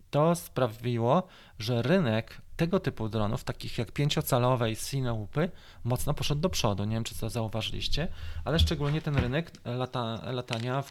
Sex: male